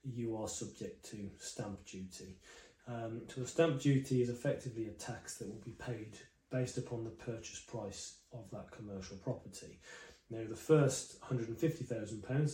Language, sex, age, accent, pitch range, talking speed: English, male, 30-49, British, 110-130 Hz, 160 wpm